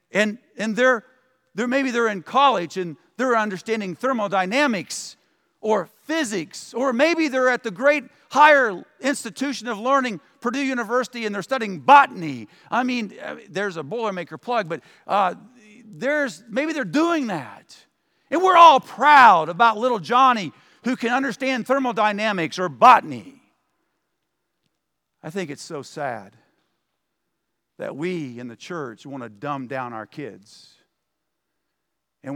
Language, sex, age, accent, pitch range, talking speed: English, male, 50-69, American, 175-255 Hz, 135 wpm